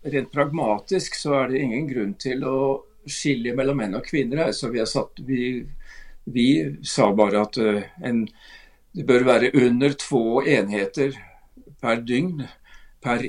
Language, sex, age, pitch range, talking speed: Swedish, male, 60-79, 120-140 Hz, 130 wpm